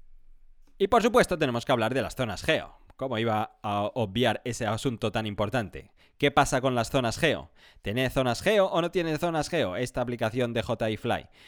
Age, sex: 30-49, male